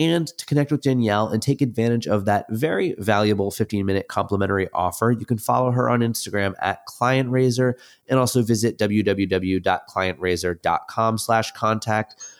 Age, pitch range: 30-49, 95-120 Hz